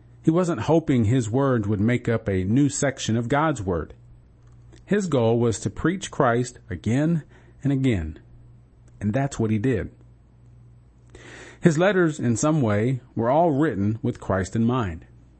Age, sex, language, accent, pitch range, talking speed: 40-59, male, English, American, 110-140 Hz, 155 wpm